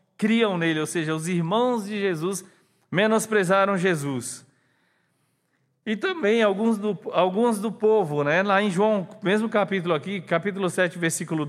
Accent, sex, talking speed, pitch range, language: Brazilian, male, 135 wpm, 140-205 Hz, Portuguese